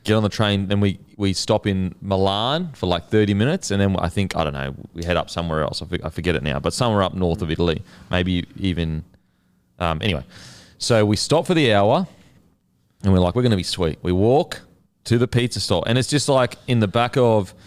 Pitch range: 95-125 Hz